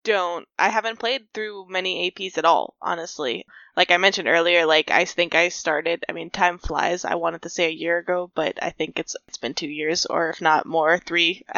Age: 10-29